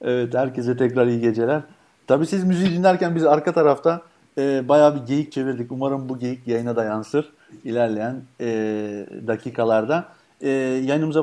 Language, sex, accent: Turkish, male, native